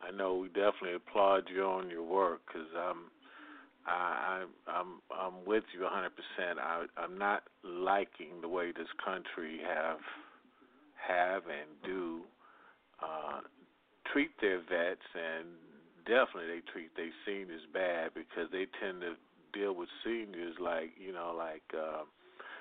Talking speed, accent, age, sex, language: 140 wpm, American, 50-69, male, English